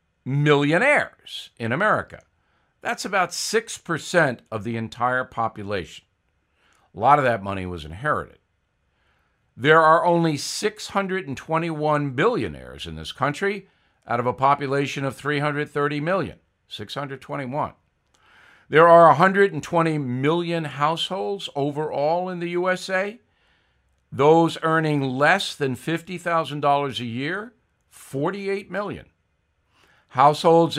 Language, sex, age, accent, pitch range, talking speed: English, male, 50-69, American, 115-170 Hz, 100 wpm